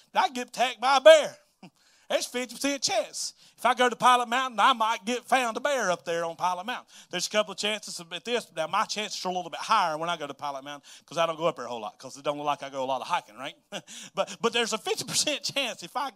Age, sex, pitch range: 30-49, male, 170-220 Hz